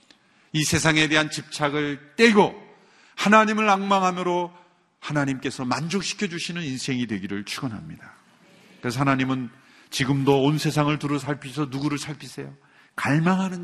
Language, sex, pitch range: Korean, male, 125-160 Hz